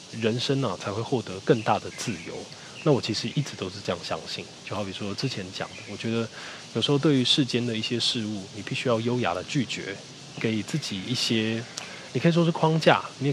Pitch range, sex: 100-135 Hz, male